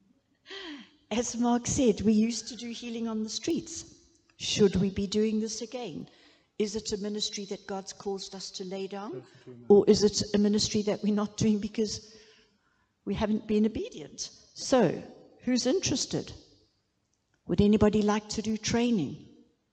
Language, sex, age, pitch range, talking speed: English, female, 70-89, 185-225 Hz, 155 wpm